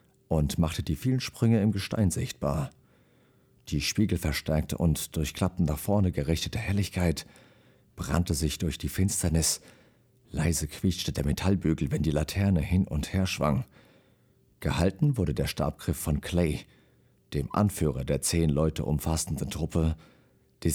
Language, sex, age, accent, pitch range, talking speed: German, male, 40-59, German, 75-100 Hz, 140 wpm